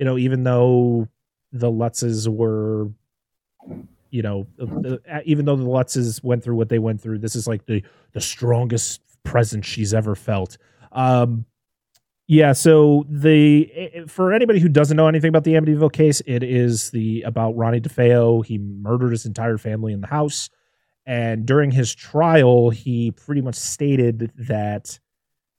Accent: American